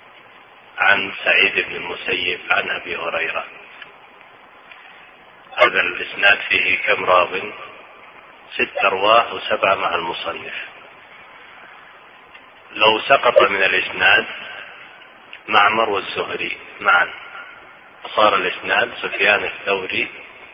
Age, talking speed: 40-59, 80 wpm